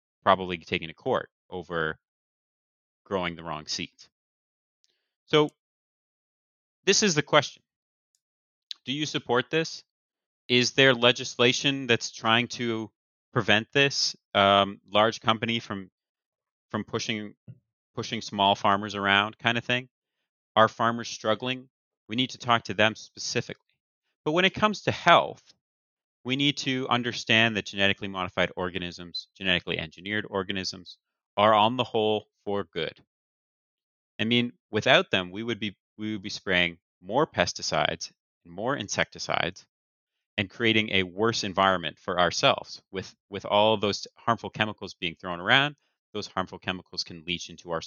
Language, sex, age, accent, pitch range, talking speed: English, male, 30-49, American, 95-120 Hz, 140 wpm